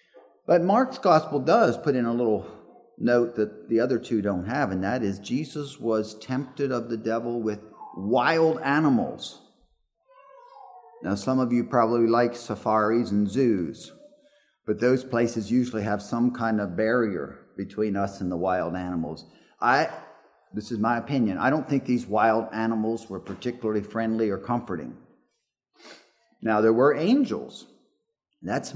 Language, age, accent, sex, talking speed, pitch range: English, 50-69, American, male, 150 wpm, 105-145 Hz